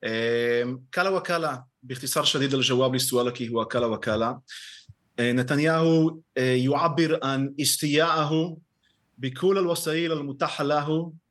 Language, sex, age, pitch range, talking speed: Arabic, male, 30-49, 140-170 Hz, 95 wpm